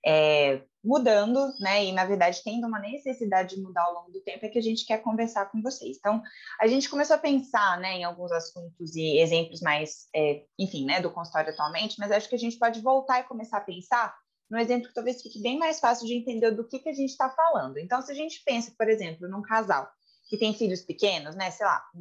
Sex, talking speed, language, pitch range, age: female, 235 wpm, Portuguese, 185-255 Hz, 20-39